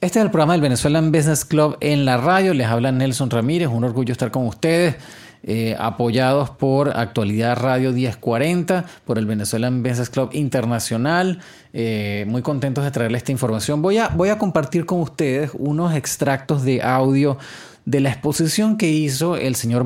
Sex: male